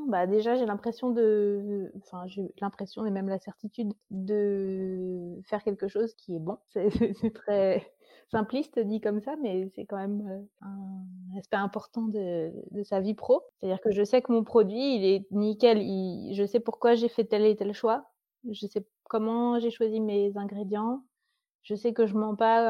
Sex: female